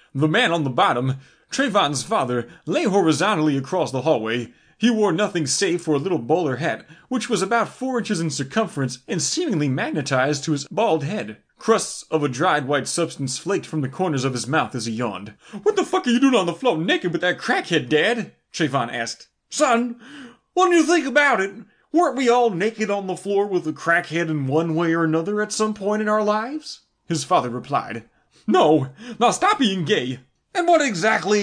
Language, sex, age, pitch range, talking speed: English, male, 30-49, 155-240 Hz, 200 wpm